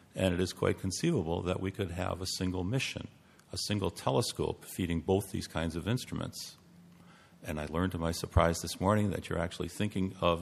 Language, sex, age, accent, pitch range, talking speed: English, male, 50-69, American, 80-95 Hz, 195 wpm